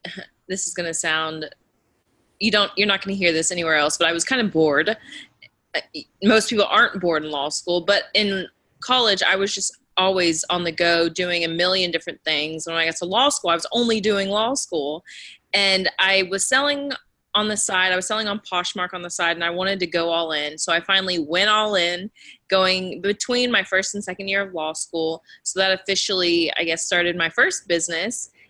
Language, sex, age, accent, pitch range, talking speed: English, female, 20-39, American, 170-195 Hz, 220 wpm